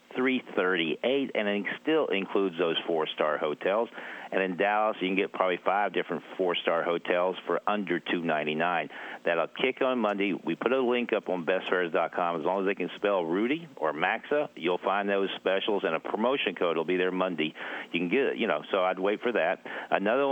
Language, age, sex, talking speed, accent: English, 50-69, male, 195 wpm, American